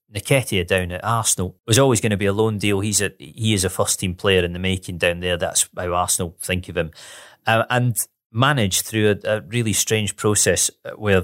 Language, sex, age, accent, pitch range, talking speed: English, male, 30-49, British, 90-105 Hz, 225 wpm